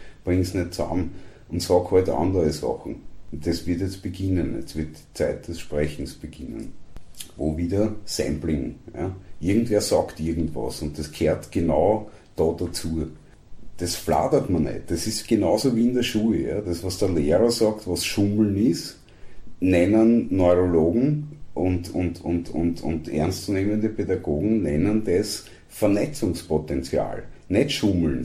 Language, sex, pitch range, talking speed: German, male, 85-110 Hz, 145 wpm